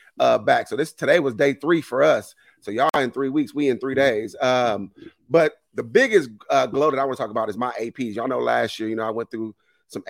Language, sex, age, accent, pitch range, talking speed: English, male, 30-49, American, 105-135 Hz, 260 wpm